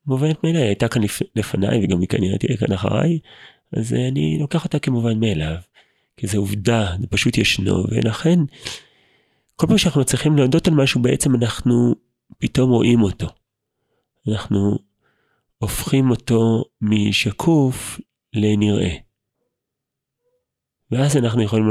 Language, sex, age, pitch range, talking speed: Hebrew, male, 30-49, 100-130 Hz, 125 wpm